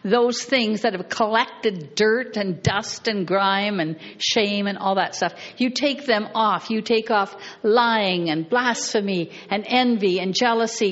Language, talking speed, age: English, 165 wpm, 60-79